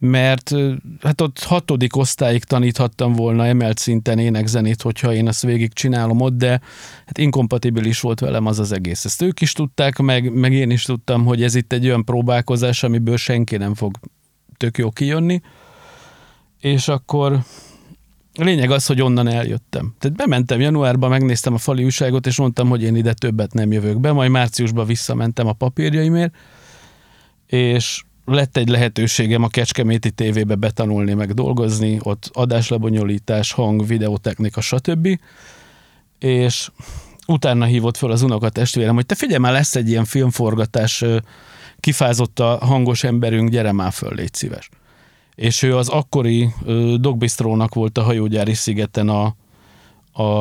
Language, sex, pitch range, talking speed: Hungarian, male, 115-130 Hz, 145 wpm